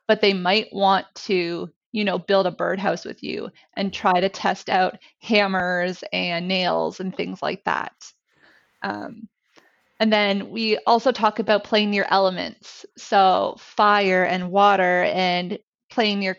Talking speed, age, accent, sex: 150 wpm, 30-49, American, female